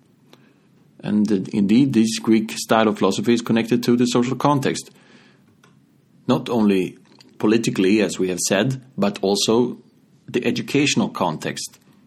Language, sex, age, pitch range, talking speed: English, male, 30-49, 105-125 Hz, 130 wpm